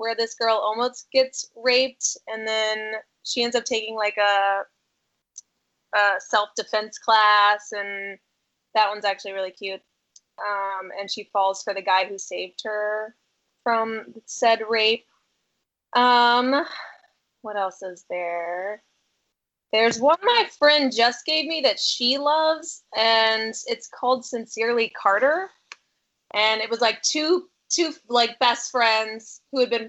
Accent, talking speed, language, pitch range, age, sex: American, 135 wpm, English, 200-240 Hz, 20-39, female